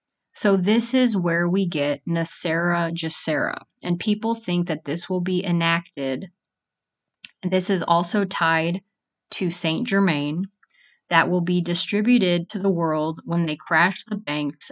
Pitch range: 170-200 Hz